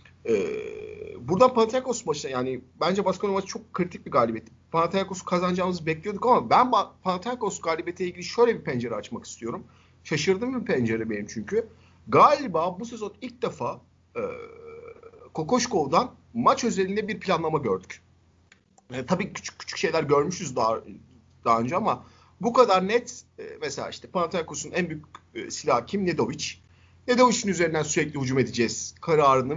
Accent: native